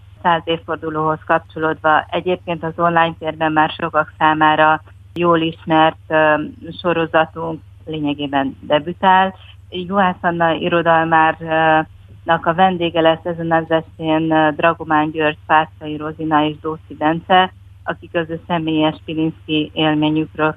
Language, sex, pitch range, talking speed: Hungarian, female, 150-170 Hz, 100 wpm